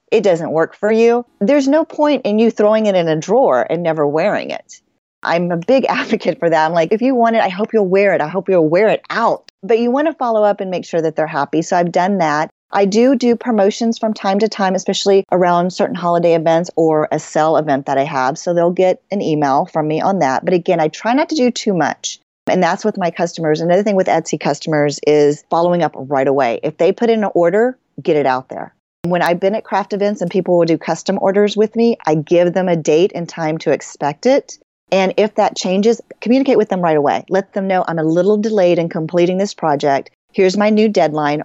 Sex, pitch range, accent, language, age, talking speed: female, 160-215 Hz, American, English, 40-59, 245 wpm